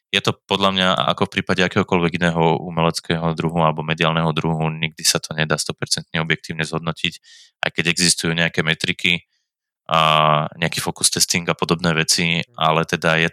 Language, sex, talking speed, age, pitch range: Czech, male, 160 wpm, 20-39, 80-85 Hz